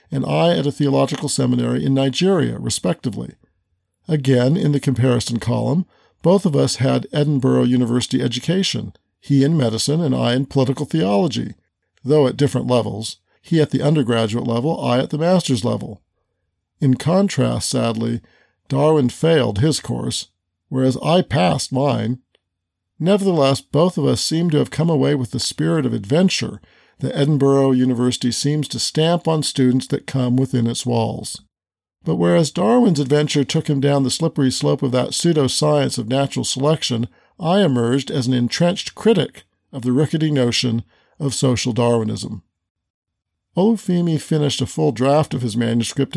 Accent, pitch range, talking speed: American, 120-155 Hz, 155 wpm